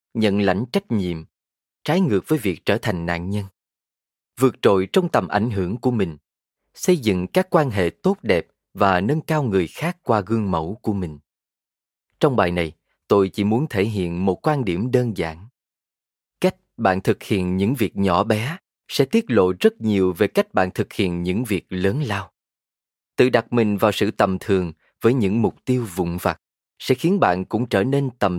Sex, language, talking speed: male, Vietnamese, 195 wpm